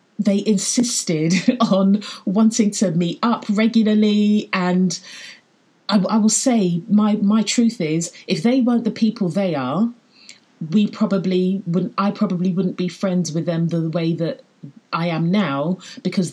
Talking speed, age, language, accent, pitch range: 150 wpm, 40-59, English, British, 180-235 Hz